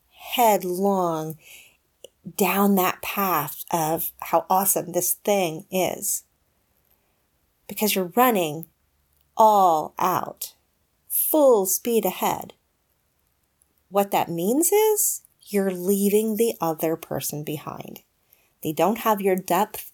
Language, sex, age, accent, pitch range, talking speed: English, female, 40-59, American, 170-220 Hz, 100 wpm